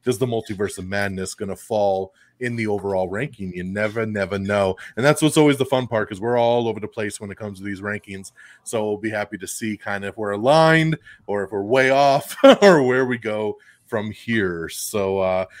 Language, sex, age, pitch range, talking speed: English, male, 30-49, 105-135 Hz, 225 wpm